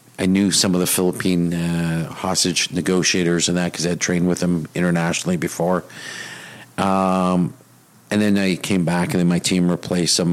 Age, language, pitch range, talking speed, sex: 50-69, English, 80-90 Hz, 180 wpm, male